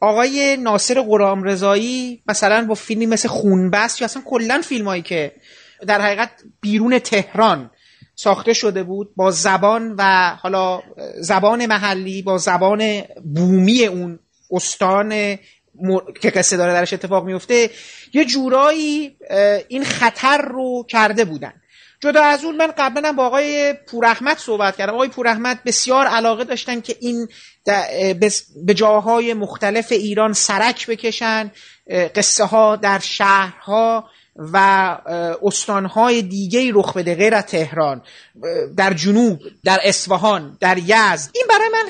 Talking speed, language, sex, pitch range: 130 wpm, Persian, male, 195-250 Hz